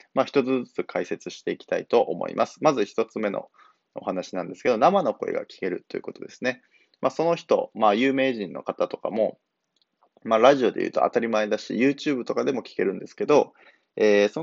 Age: 20-39